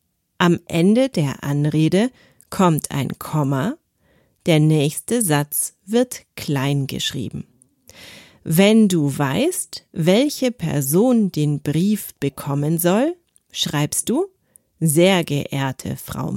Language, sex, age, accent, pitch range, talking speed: German, female, 40-59, German, 150-215 Hz, 100 wpm